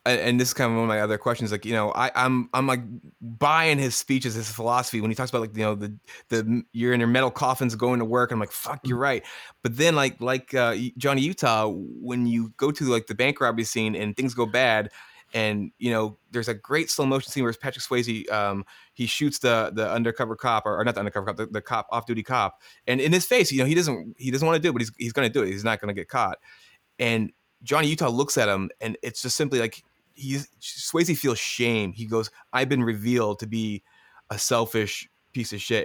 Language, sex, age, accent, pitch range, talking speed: English, male, 20-39, American, 110-130 Hz, 245 wpm